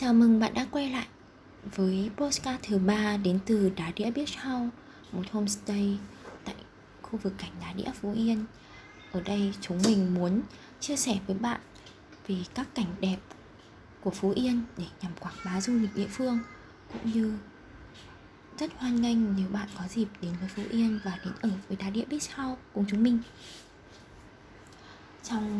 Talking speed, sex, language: 175 wpm, female, Vietnamese